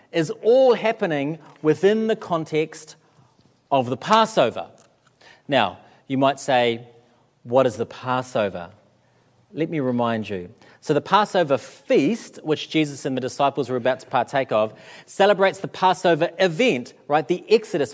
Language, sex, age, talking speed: English, male, 40-59, 140 wpm